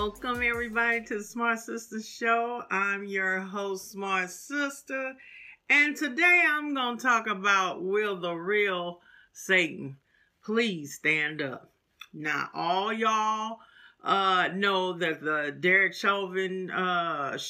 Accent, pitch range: American, 155-200 Hz